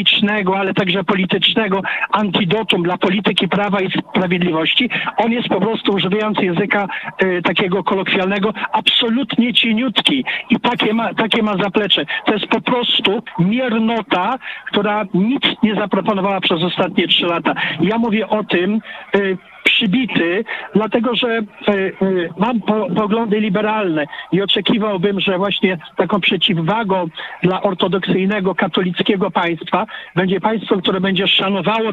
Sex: male